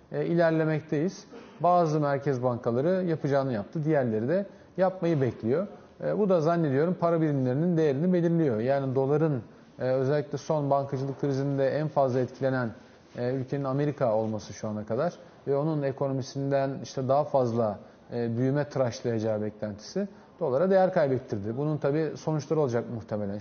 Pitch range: 125-160 Hz